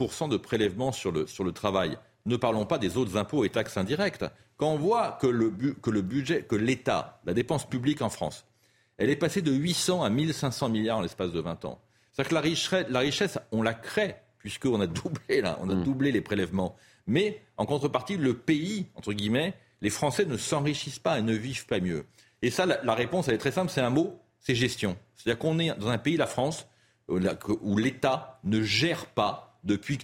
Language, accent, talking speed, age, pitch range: French, French, 220 wpm, 40-59, 115-160 Hz